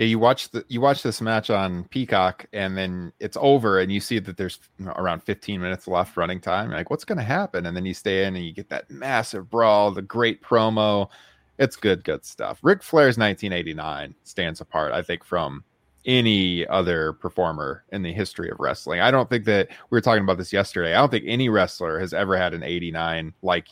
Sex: male